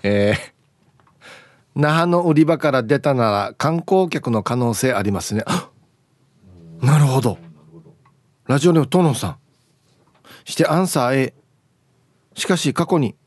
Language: Japanese